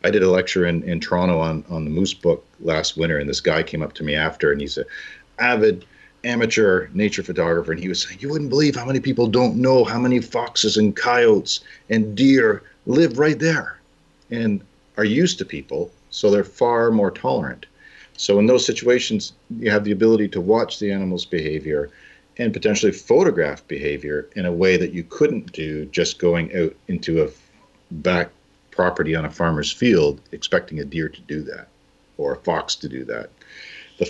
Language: English